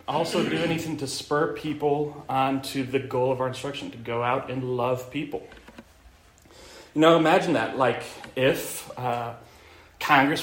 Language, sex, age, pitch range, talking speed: English, male, 30-49, 125-175 Hz, 155 wpm